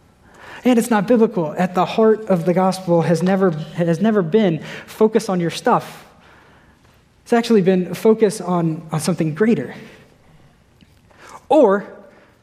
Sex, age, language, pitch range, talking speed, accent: male, 20-39, English, 165-215 Hz, 135 wpm, American